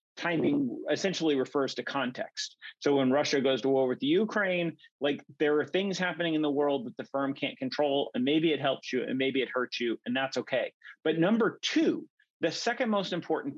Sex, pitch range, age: male, 130-190 Hz, 40-59